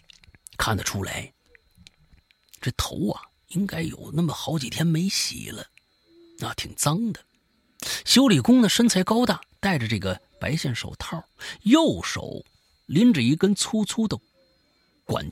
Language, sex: Chinese, male